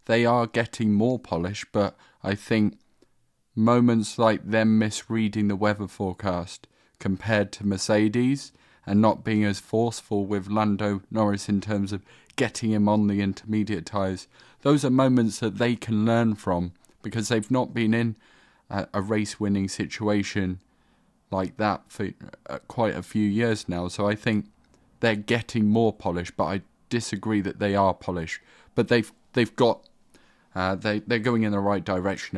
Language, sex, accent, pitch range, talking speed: English, male, British, 95-110 Hz, 160 wpm